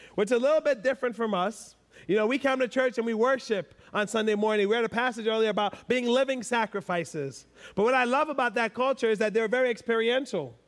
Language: English